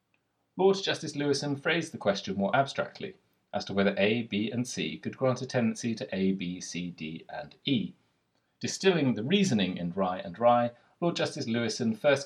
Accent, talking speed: British, 180 wpm